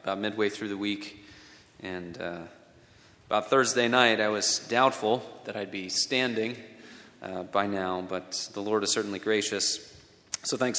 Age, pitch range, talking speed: 30-49, 105-135 Hz, 155 wpm